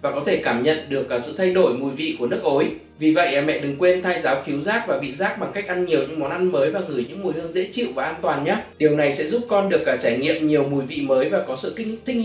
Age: 20-39